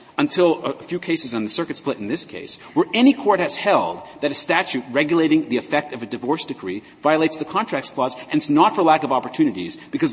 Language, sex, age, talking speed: English, male, 40-59, 225 wpm